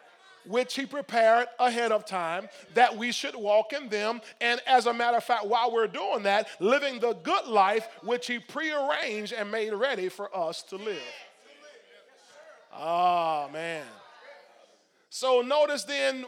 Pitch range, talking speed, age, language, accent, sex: 210-280 Hz, 155 wpm, 40-59, English, American, male